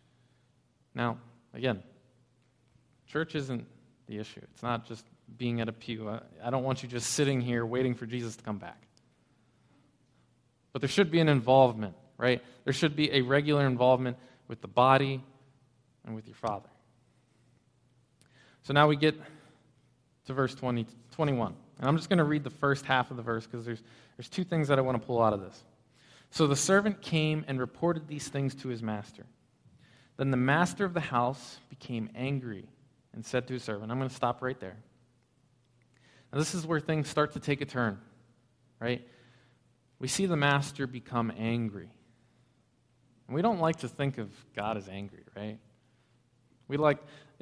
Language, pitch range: English, 120-145 Hz